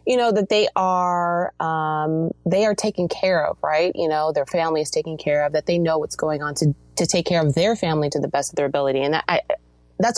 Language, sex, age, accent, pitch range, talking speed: English, female, 30-49, American, 150-190 Hz, 255 wpm